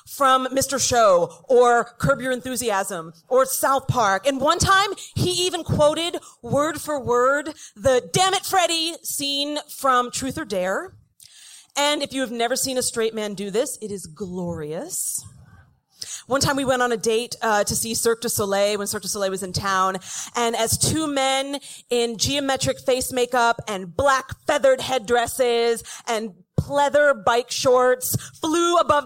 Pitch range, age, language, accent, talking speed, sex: 210-285 Hz, 40-59, English, American, 165 wpm, female